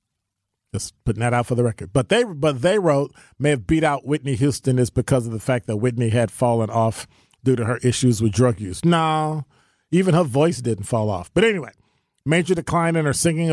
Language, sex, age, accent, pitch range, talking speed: English, male, 40-59, American, 110-145 Hz, 215 wpm